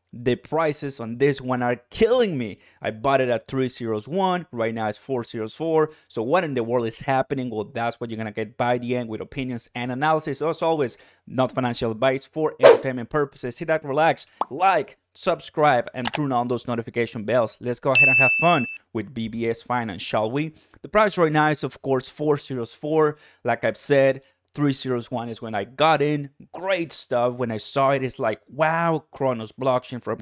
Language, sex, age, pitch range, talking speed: English, male, 30-49, 115-150 Hz, 190 wpm